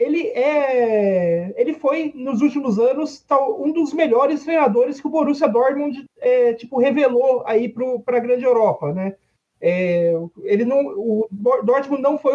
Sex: male